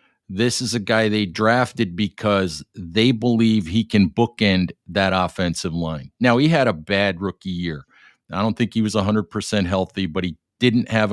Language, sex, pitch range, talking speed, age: English, male, 95-115 Hz, 180 wpm, 50-69